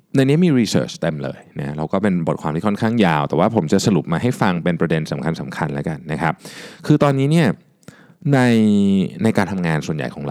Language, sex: Thai, male